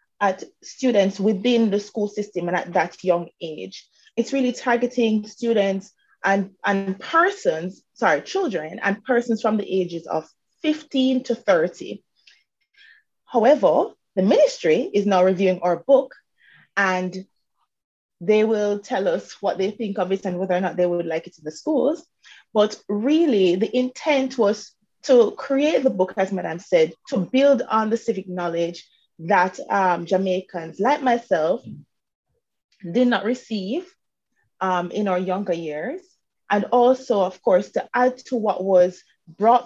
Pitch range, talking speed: 185-250 Hz, 150 wpm